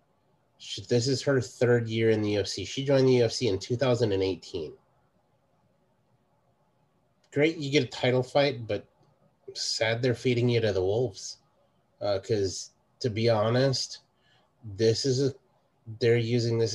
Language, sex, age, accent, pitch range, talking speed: English, male, 30-49, American, 100-120 Hz, 150 wpm